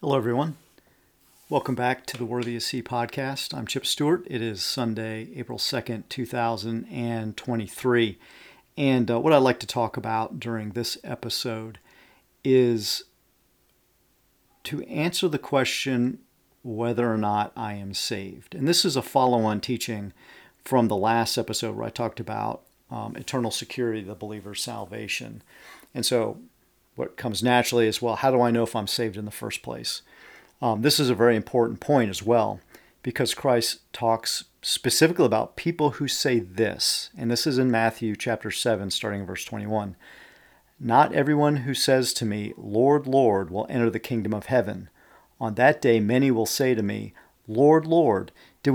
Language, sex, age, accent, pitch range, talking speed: English, male, 50-69, American, 110-130 Hz, 165 wpm